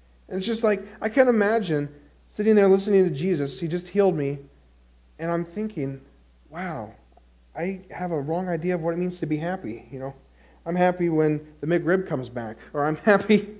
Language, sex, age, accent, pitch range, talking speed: English, male, 40-59, American, 125-190 Hz, 195 wpm